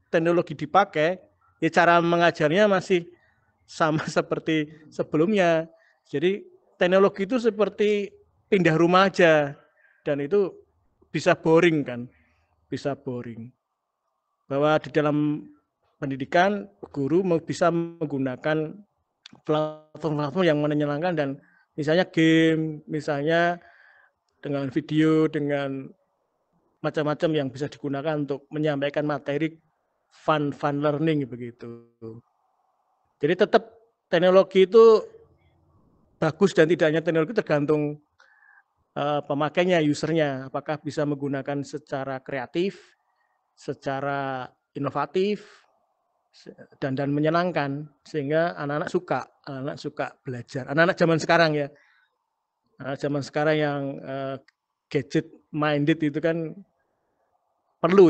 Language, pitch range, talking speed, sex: Indonesian, 145-175 Hz, 95 wpm, male